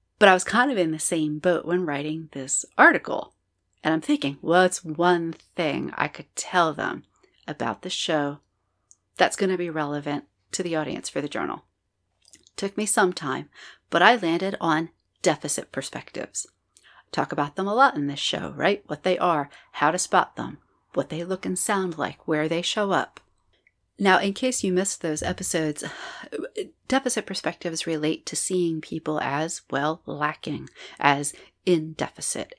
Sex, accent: female, American